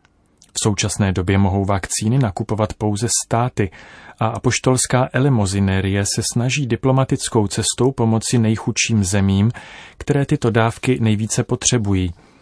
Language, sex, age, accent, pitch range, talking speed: Czech, male, 30-49, native, 100-125 Hz, 110 wpm